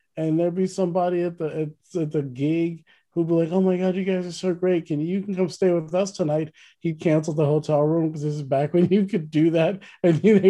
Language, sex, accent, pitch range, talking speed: English, male, American, 150-195 Hz, 255 wpm